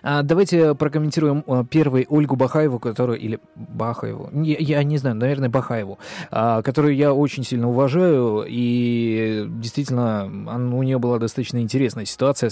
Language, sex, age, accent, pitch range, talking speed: Russian, male, 20-39, native, 120-155 Hz, 125 wpm